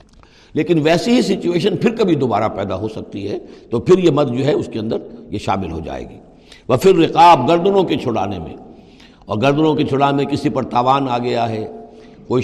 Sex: male